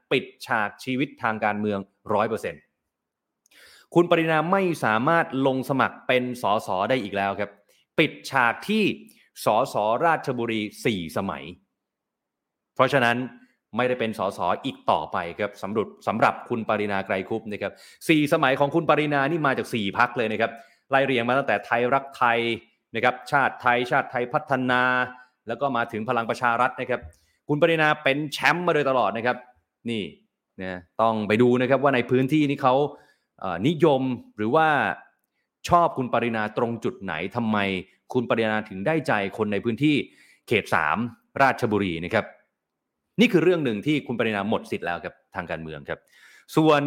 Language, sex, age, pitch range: Thai, male, 20-39, 110-145 Hz